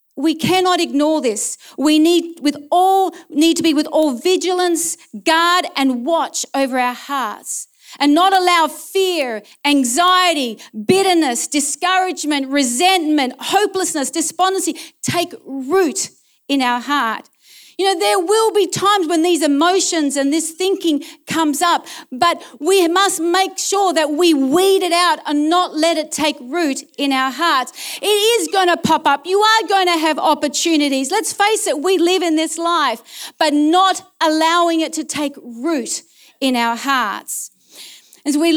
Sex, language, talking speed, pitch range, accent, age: female, English, 150 wpm, 275-350 Hz, Australian, 40-59